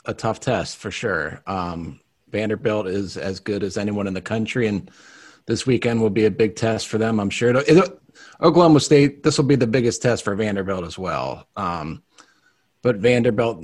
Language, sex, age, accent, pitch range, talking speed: English, male, 30-49, American, 105-130 Hz, 185 wpm